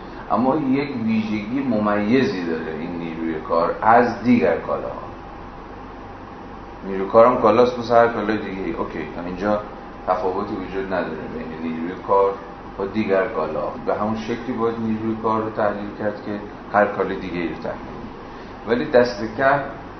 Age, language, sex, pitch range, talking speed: 30-49, Persian, male, 95-115 Hz, 130 wpm